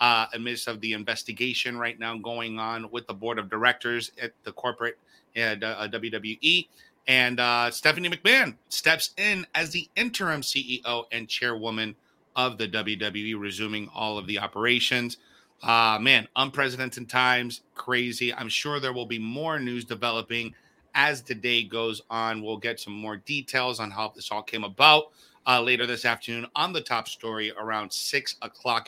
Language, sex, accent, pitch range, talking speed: English, male, American, 115-145 Hz, 165 wpm